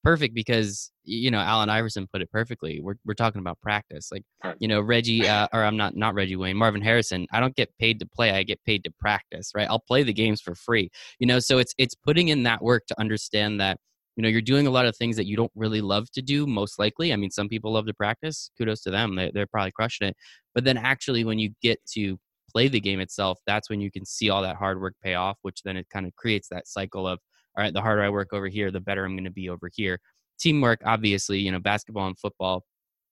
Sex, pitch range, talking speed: male, 95-115 Hz, 260 wpm